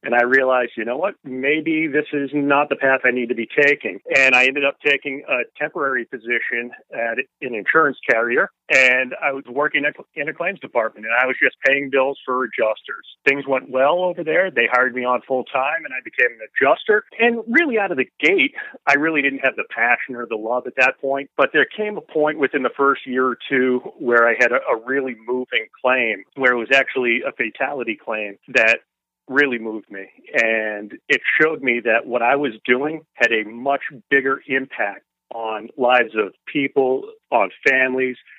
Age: 40-59